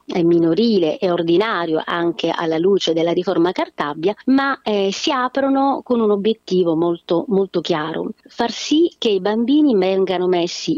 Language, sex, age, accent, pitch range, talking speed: Italian, female, 40-59, native, 170-225 Hz, 145 wpm